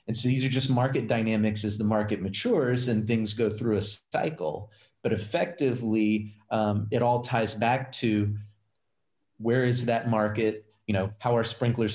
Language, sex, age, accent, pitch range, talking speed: English, male, 30-49, American, 95-110 Hz, 170 wpm